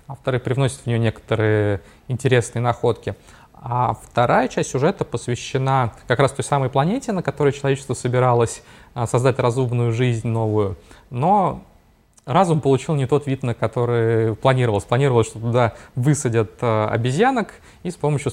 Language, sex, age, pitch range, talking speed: Russian, male, 20-39, 115-140 Hz, 140 wpm